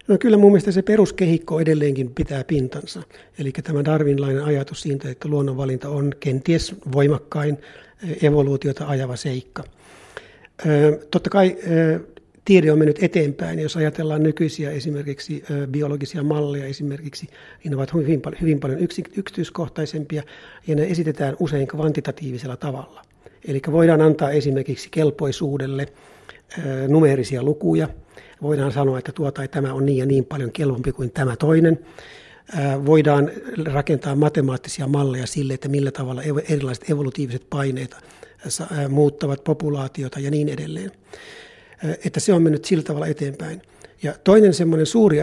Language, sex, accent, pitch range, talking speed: Finnish, male, native, 140-160 Hz, 120 wpm